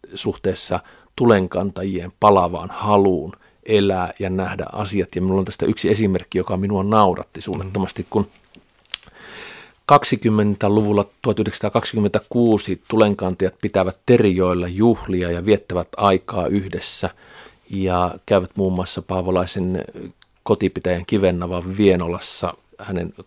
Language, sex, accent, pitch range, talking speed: Finnish, male, native, 90-105 Hz, 100 wpm